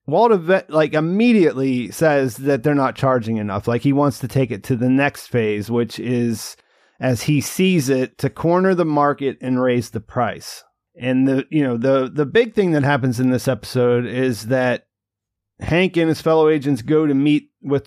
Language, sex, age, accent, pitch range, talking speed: English, male, 30-49, American, 125-155 Hz, 190 wpm